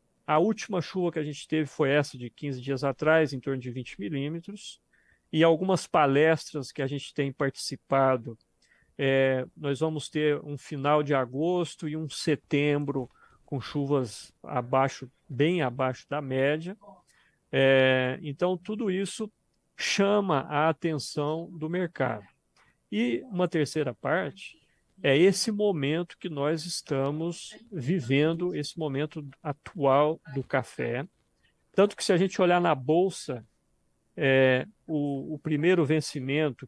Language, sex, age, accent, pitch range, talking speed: Portuguese, male, 50-69, Brazilian, 135-175 Hz, 135 wpm